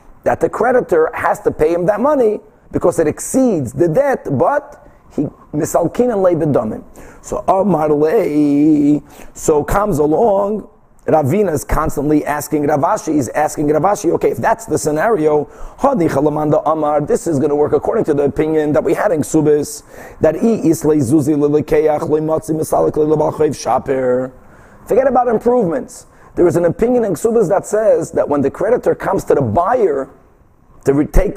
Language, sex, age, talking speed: English, male, 30-49, 150 wpm